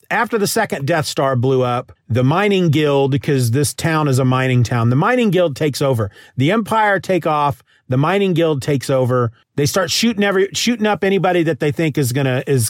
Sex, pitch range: male, 130-165 Hz